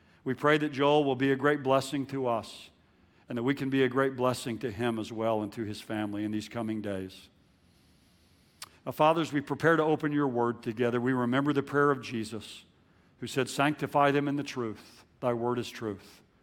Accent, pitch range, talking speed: American, 120-150 Hz, 210 wpm